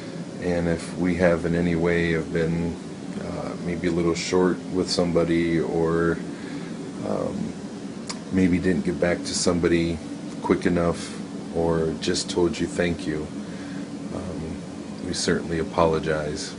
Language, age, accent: English, 40-59, American